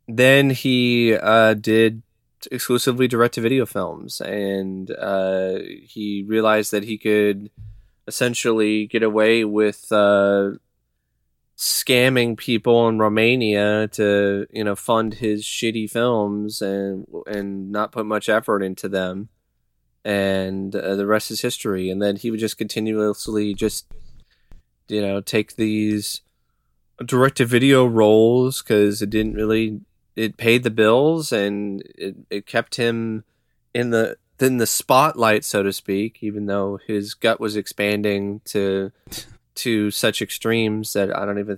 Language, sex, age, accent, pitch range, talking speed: English, male, 20-39, American, 100-120 Hz, 140 wpm